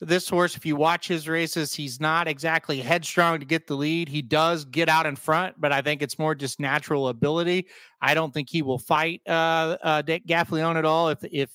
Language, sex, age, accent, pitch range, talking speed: English, male, 30-49, American, 155-190 Hz, 220 wpm